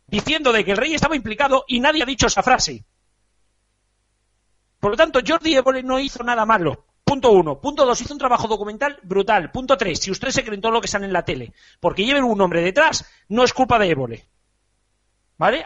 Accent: Spanish